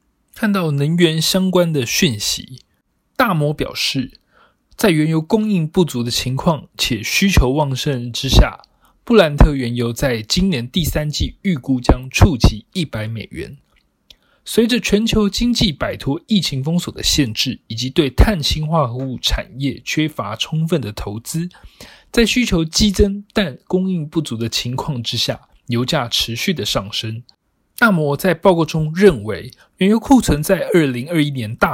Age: 20-39